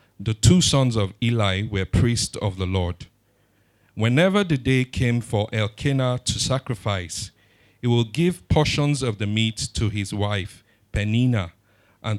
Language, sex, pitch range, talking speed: English, male, 105-125 Hz, 150 wpm